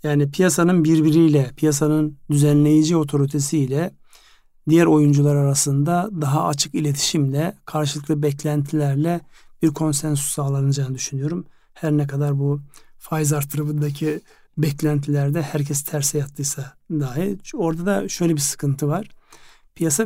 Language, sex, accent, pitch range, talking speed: Turkish, male, native, 140-165 Hz, 110 wpm